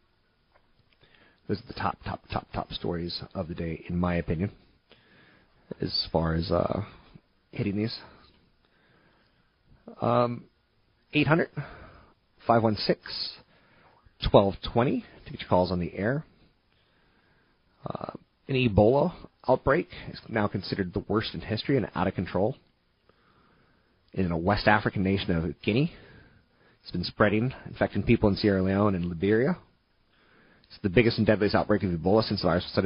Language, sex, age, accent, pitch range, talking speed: English, male, 30-49, American, 90-115 Hz, 130 wpm